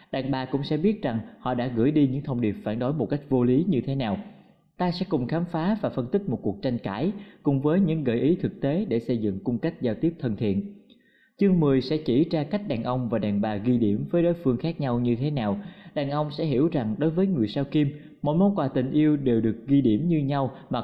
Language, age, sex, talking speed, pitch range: Vietnamese, 20-39, male, 270 wpm, 115-175 Hz